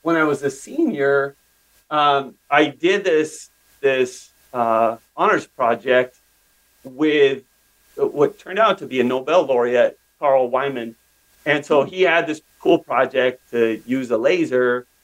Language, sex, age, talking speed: English, male, 40-59, 140 wpm